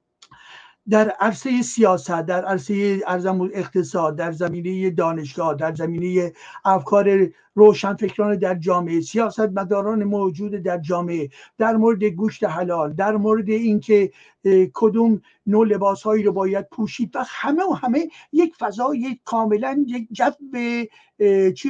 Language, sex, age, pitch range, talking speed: Persian, male, 60-79, 185-230 Hz, 120 wpm